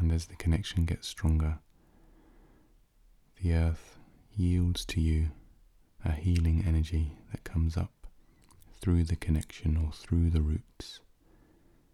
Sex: male